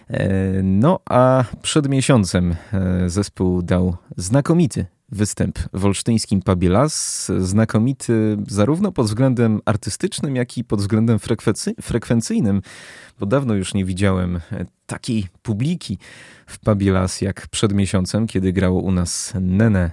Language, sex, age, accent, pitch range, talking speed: Polish, male, 30-49, native, 95-120 Hz, 115 wpm